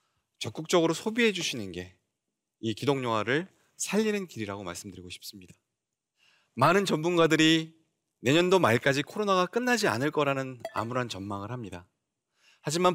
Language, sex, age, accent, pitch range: Korean, male, 30-49, native, 120-175 Hz